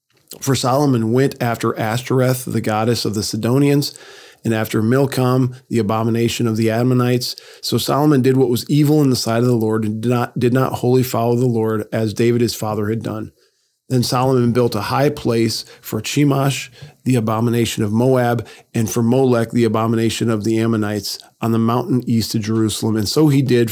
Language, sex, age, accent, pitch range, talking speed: English, male, 40-59, American, 110-130 Hz, 185 wpm